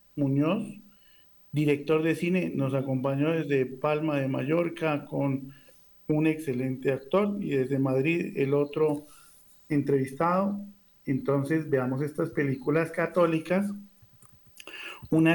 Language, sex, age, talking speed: Spanish, male, 50-69, 100 wpm